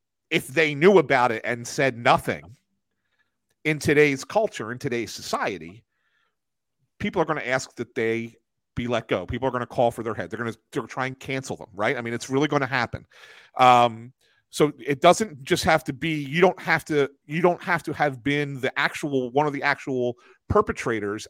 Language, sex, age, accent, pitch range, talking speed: English, male, 40-59, American, 115-145 Hz, 205 wpm